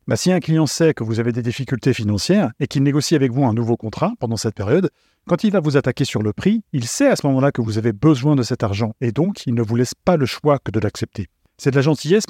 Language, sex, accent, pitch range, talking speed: French, male, French, 115-145 Hz, 285 wpm